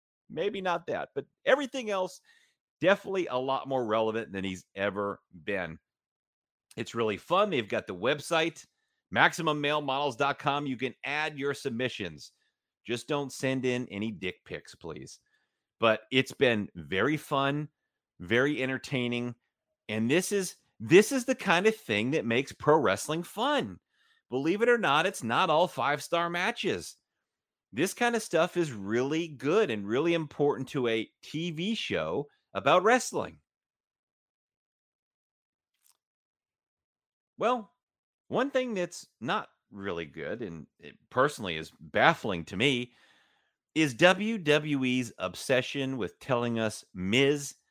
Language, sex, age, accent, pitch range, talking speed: English, male, 30-49, American, 120-175 Hz, 130 wpm